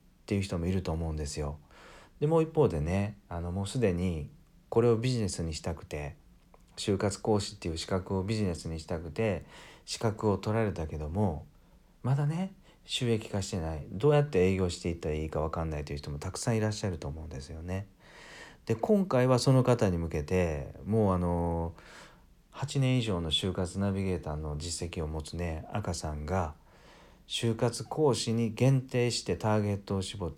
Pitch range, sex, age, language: 80-110 Hz, male, 40-59, Japanese